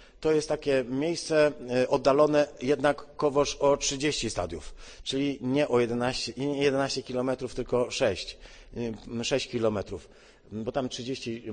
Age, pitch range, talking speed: 40-59, 120-145 Hz, 115 wpm